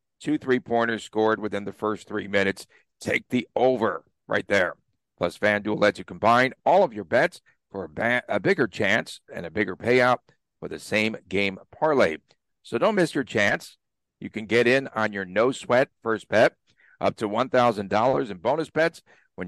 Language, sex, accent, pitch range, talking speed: English, male, American, 105-130 Hz, 175 wpm